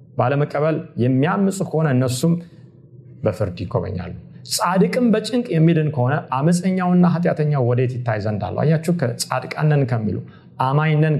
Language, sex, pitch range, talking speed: Amharic, male, 115-165 Hz, 90 wpm